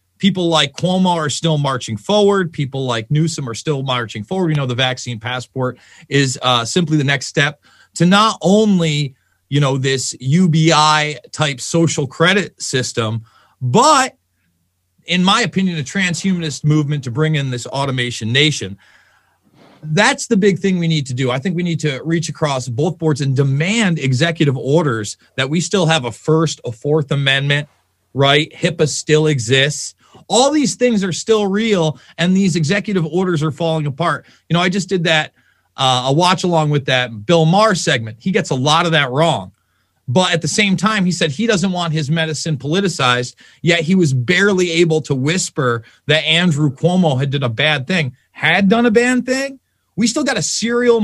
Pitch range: 135-180 Hz